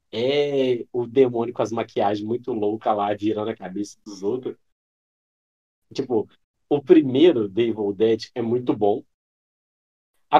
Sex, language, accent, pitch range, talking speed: male, Portuguese, Brazilian, 110-140 Hz, 135 wpm